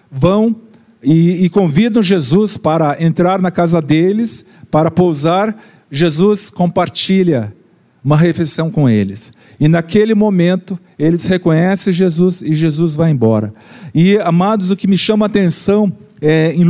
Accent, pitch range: Brazilian, 160-200 Hz